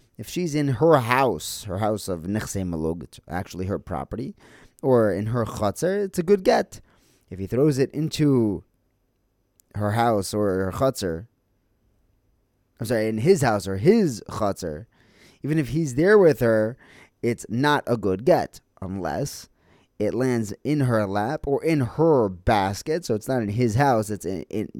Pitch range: 100-135 Hz